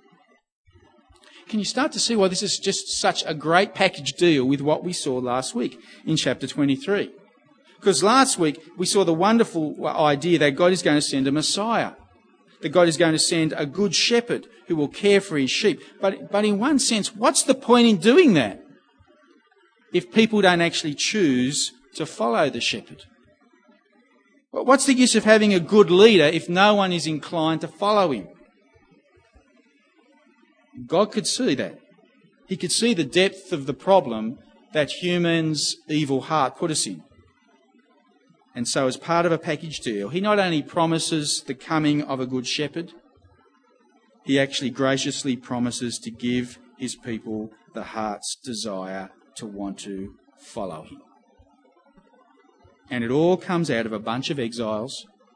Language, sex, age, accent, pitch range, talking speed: English, male, 40-59, Australian, 130-195 Hz, 165 wpm